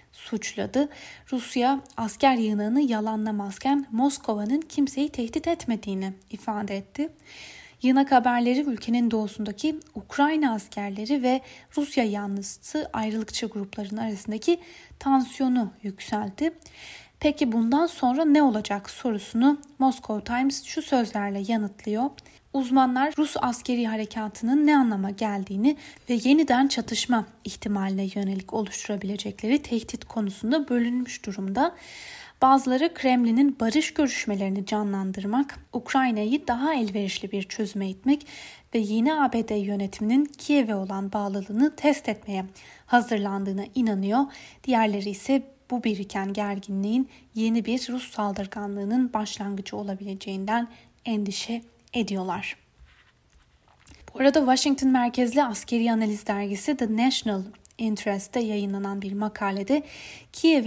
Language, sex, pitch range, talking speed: Turkish, female, 205-270 Hz, 100 wpm